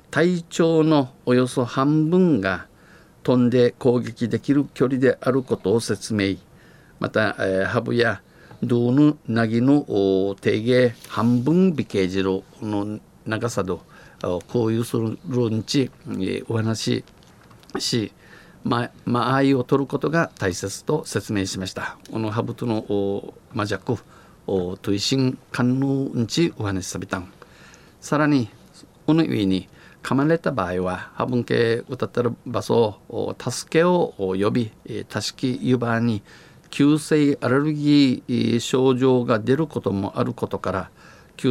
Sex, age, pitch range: male, 50-69, 105-135 Hz